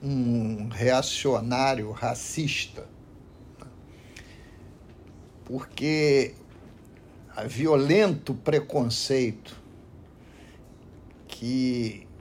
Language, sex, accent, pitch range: Portuguese, male, Brazilian, 110-175 Hz